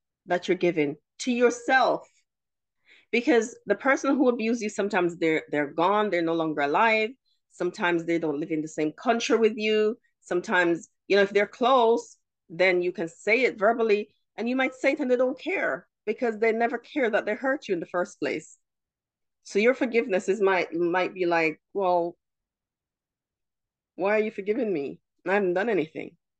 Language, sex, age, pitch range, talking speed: English, female, 30-49, 170-235 Hz, 180 wpm